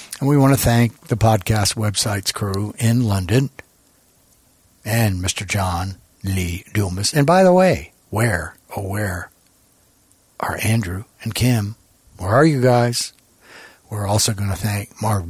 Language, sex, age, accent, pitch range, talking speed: English, male, 60-79, American, 100-120 Hz, 145 wpm